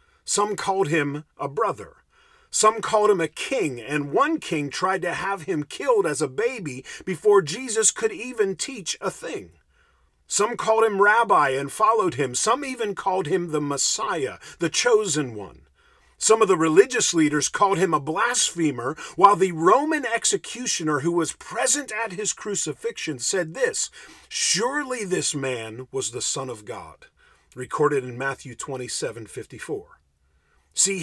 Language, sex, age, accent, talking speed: English, male, 50-69, American, 155 wpm